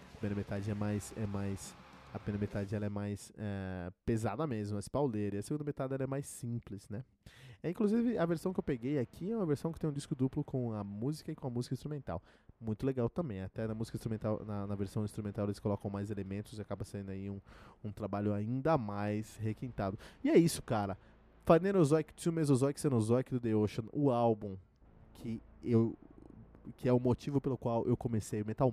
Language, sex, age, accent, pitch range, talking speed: Portuguese, male, 20-39, Brazilian, 105-150 Hz, 205 wpm